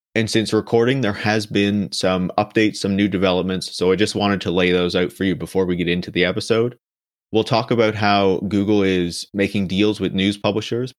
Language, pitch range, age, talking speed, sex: English, 90-105 Hz, 30-49, 205 wpm, male